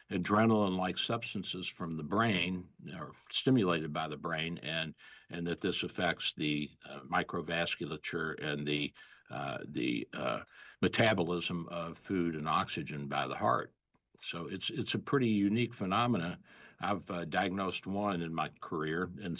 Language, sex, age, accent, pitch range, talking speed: English, male, 60-79, American, 85-105 Hz, 140 wpm